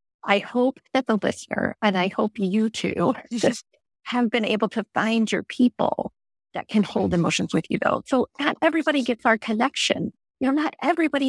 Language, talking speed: English, 185 wpm